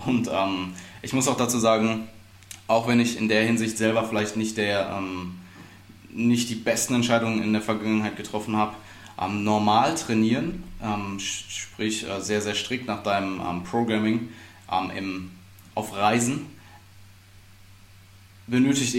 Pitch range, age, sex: 95-115 Hz, 20-39, male